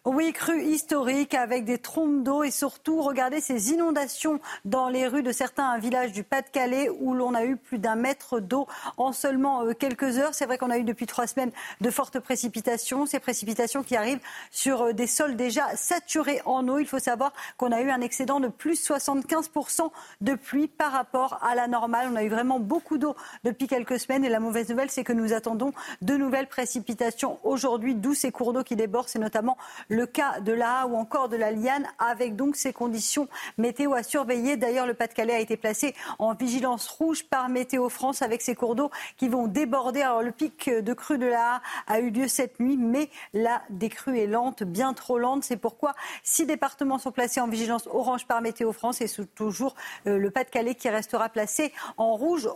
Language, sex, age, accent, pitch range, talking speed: French, female, 40-59, French, 235-275 Hz, 205 wpm